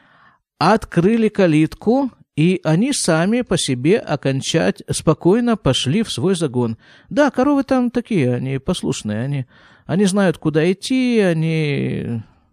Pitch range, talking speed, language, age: 130-185 Hz, 120 wpm, Russian, 50-69